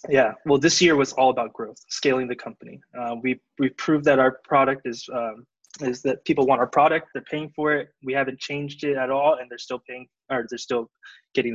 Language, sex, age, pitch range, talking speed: English, male, 20-39, 115-135 Hz, 230 wpm